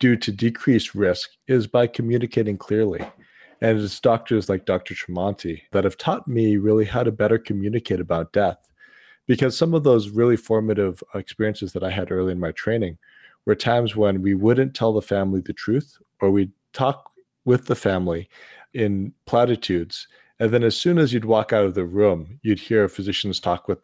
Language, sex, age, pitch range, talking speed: English, male, 40-59, 95-120 Hz, 185 wpm